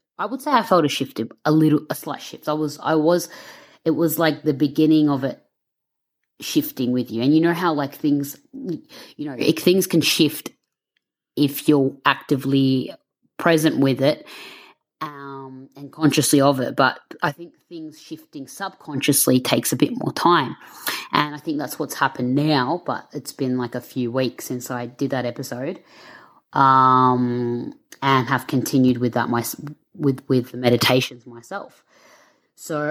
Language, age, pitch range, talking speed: English, 20-39, 130-160 Hz, 170 wpm